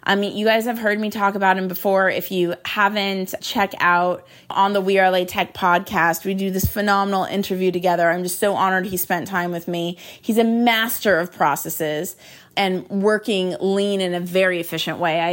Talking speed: 205 wpm